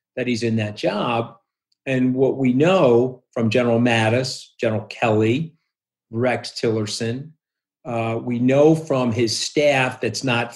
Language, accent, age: English, American, 40-59